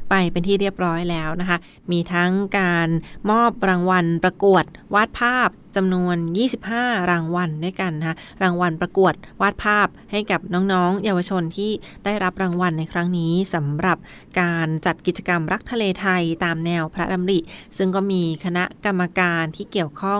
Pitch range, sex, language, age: 170-195 Hz, female, Thai, 20-39